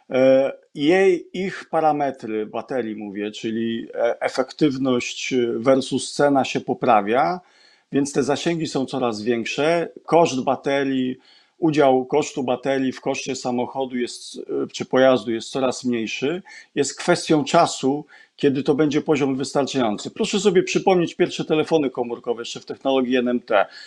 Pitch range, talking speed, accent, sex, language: 130-160 Hz, 125 wpm, native, male, Polish